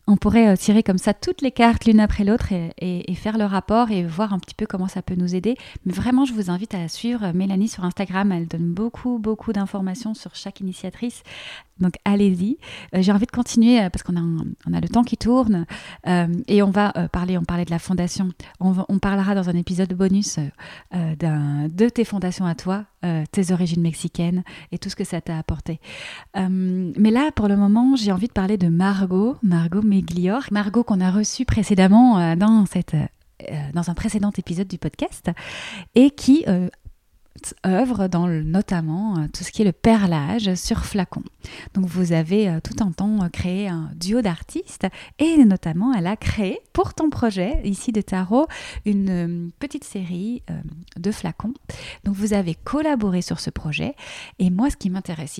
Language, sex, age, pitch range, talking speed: French, female, 30-49, 175-215 Hz, 185 wpm